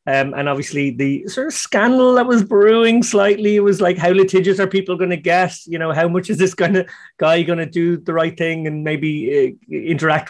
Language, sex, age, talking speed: English, male, 30-49, 220 wpm